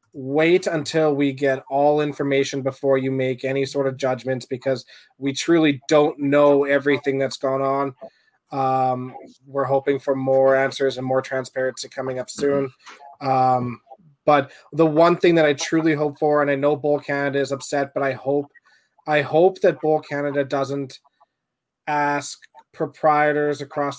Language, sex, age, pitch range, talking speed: English, male, 20-39, 135-150 Hz, 160 wpm